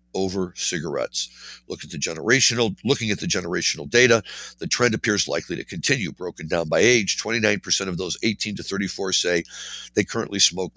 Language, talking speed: English, 150 wpm